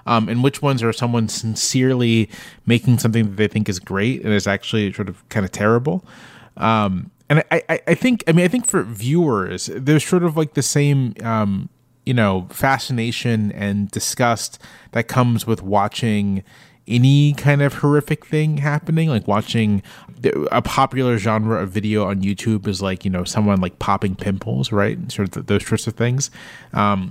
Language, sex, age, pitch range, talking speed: English, male, 30-49, 105-140 Hz, 180 wpm